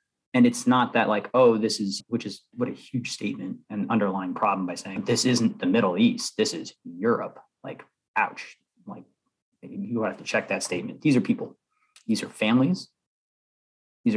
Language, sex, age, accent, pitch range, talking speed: English, male, 30-49, American, 100-135 Hz, 180 wpm